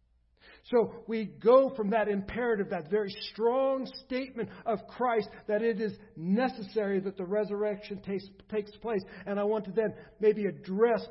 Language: English